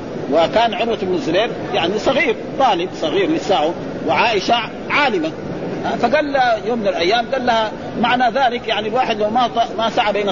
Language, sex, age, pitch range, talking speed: Arabic, male, 50-69, 200-250 Hz, 155 wpm